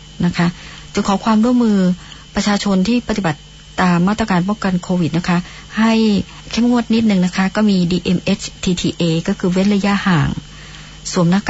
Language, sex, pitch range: Thai, male, 160-190 Hz